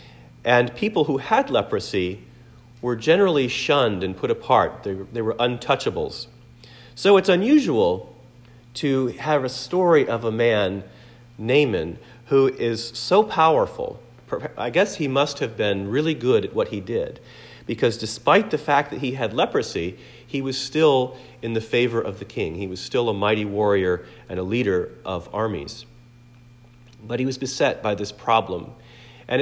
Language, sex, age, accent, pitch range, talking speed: English, male, 40-59, American, 110-135 Hz, 155 wpm